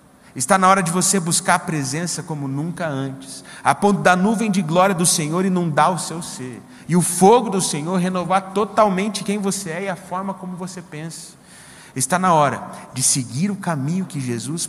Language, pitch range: Portuguese, 115-160 Hz